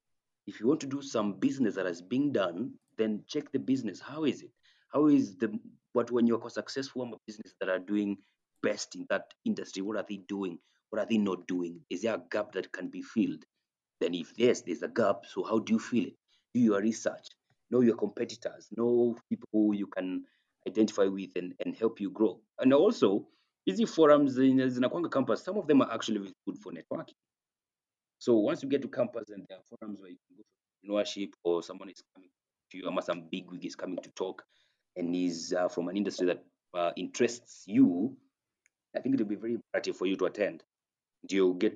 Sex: male